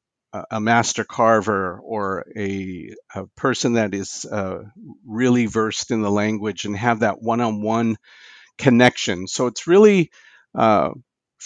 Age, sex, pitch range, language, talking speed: 50-69, male, 110-130 Hz, English, 125 wpm